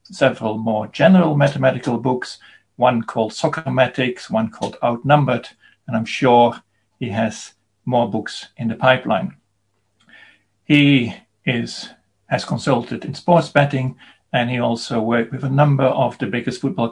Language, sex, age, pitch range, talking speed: English, male, 50-69, 115-150 Hz, 135 wpm